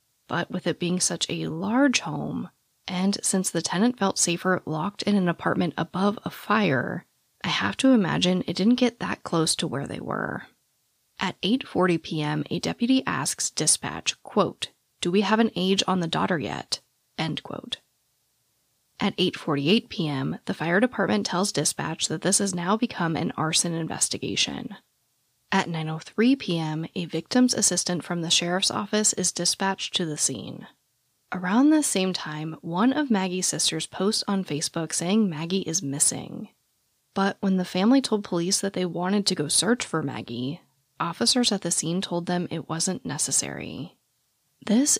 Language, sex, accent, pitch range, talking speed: English, female, American, 160-205 Hz, 160 wpm